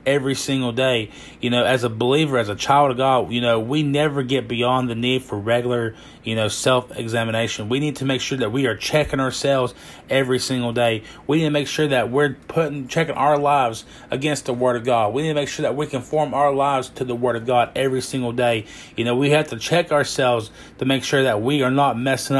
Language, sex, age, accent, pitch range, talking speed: English, male, 30-49, American, 125-145 Hz, 235 wpm